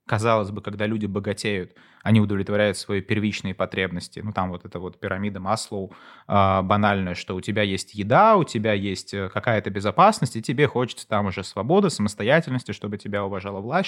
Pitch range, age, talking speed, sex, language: 100-120 Hz, 20-39, 170 wpm, male, Russian